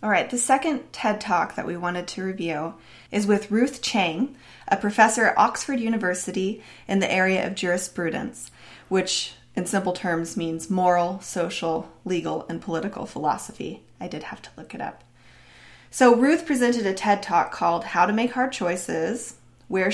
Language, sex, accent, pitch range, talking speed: English, female, American, 175-230 Hz, 170 wpm